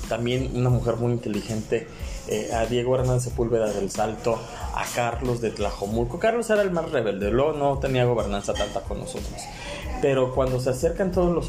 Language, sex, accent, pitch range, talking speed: Spanish, male, Mexican, 120-160 Hz, 180 wpm